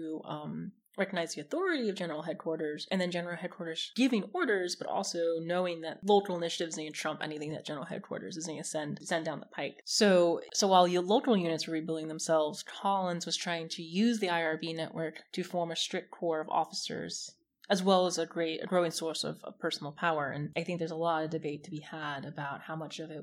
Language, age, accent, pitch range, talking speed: English, 20-39, American, 155-185 Hz, 220 wpm